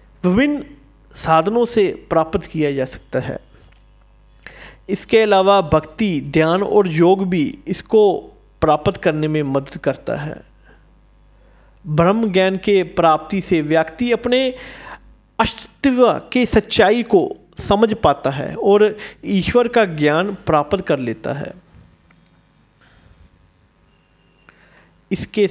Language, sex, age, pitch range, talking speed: Hindi, male, 50-69, 145-200 Hz, 105 wpm